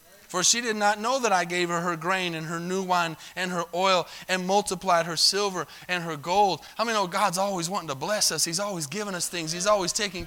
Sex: male